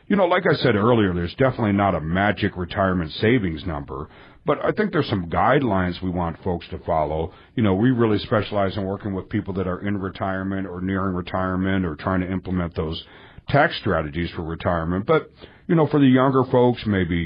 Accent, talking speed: American, 200 wpm